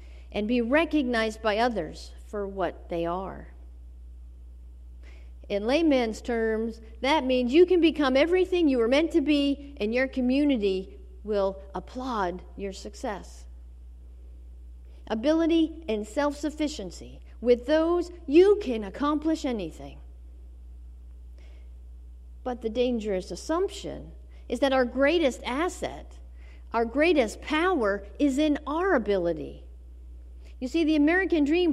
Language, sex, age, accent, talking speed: English, female, 50-69, American, 115 wpm